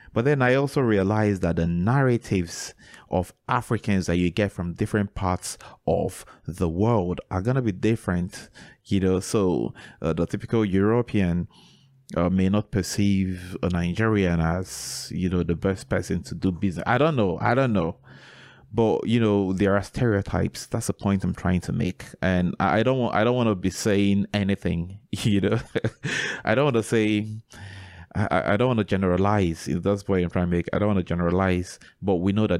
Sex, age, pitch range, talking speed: male, 30-49, 90-110 Hz, 180 wpm